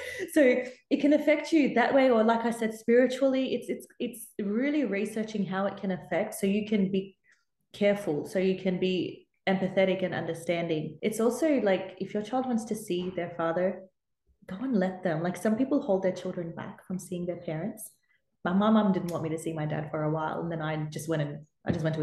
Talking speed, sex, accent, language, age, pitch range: 225 wpm, female, Australian, English, 20-39, 160-205 Hz